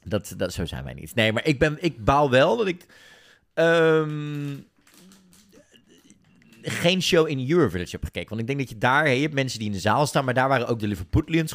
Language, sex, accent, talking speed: Dutch, male, Dutch, 230 wpm